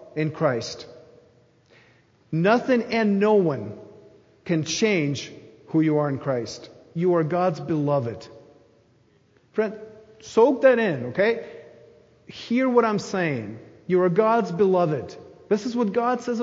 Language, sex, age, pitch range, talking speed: English, male, 40-59, 145-225 Hz, 130 wpm